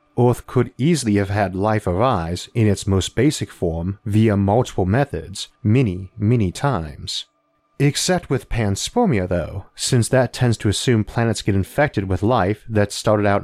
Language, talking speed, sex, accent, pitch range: English, 155 wpm, male, American, 95-125 Hz